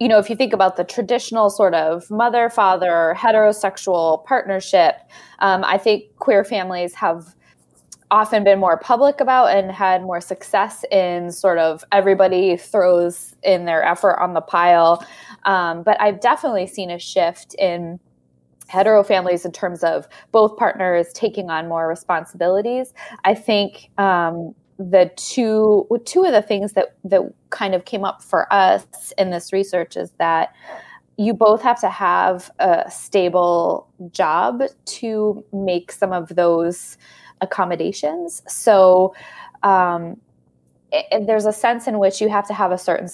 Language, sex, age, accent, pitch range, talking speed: English, female, 20-39, American, 170-210 Hz, 155 wpm